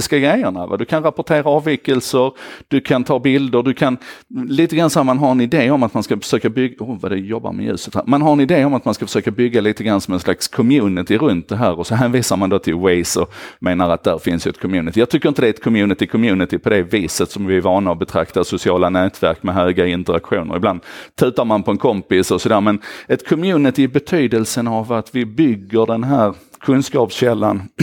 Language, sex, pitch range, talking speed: Swedish, male, 95-130 Hz, 230 wpm